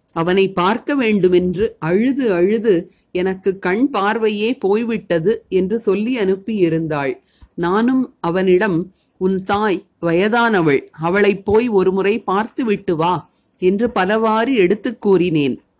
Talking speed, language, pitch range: 100 wpm, Tamil, 180-220 Hz